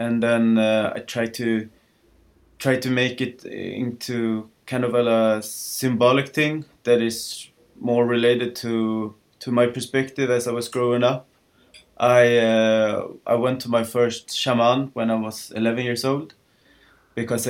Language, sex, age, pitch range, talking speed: English, male, 20-39, 110-120 Hz, 155 wpm